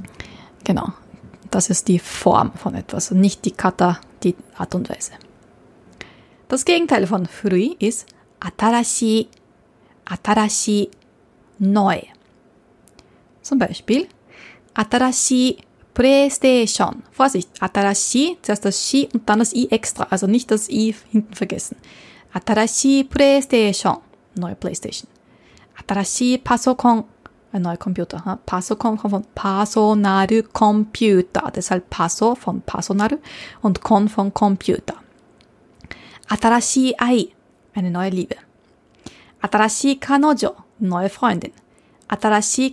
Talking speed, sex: 110 wpm, female